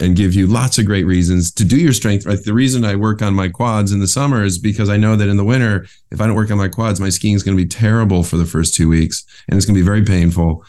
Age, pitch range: 30-49, 80-100 Hz